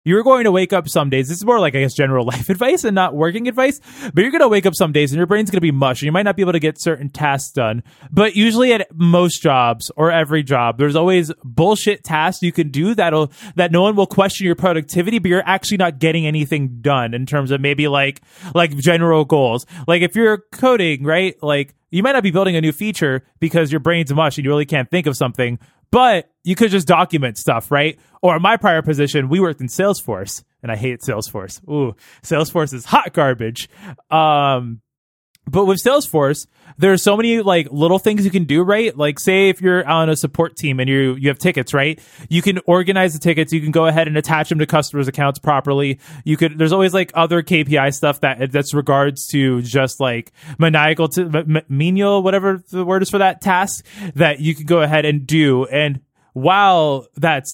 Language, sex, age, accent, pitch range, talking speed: English, male, 20-39, American, 145-185 Hz, 220 wpm